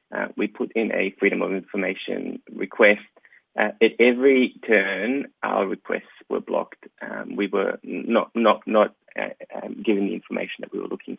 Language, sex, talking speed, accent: English, male, 170 wpm, Australian